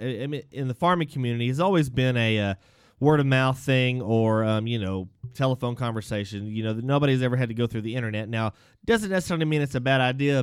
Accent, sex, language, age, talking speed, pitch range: American, male, English, 30-49, 215 wpm, 110-140 Hz